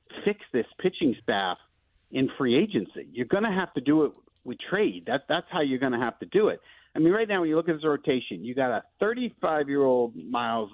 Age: 50-69